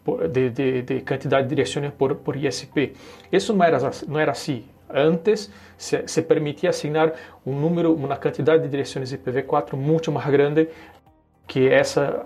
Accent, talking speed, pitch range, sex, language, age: Brazilian, 155 wpm, 140-170 Hz, male, Spanish, 40-59